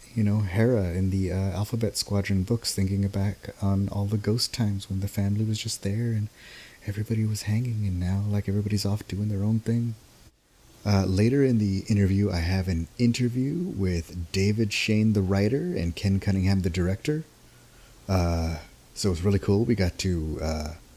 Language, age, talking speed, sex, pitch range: English, 30-49, 185 wpm, male, 90-110 Hz